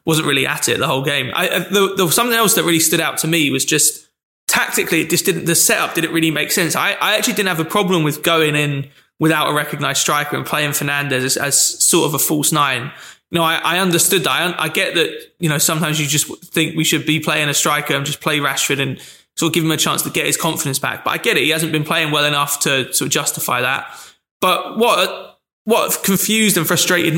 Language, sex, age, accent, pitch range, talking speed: English, male, 20-39, British, 150-175 Hz, 250 wpm